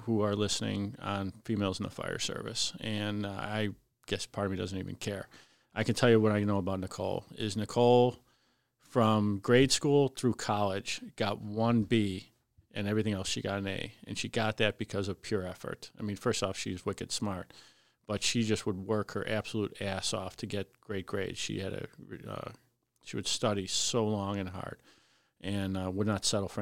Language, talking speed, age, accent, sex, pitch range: English, 205 wpm, 40-59, American, male, 95-115 Hz